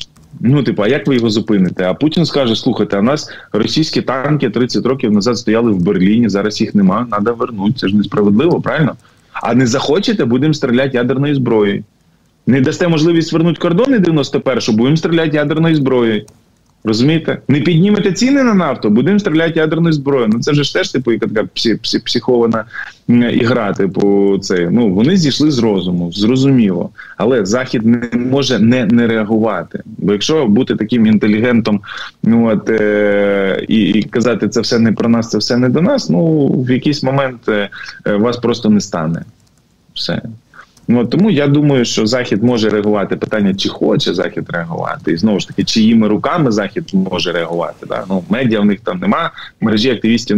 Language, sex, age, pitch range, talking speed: Ukrainian, male, 20-39, 105-140 Hz, 165 wpm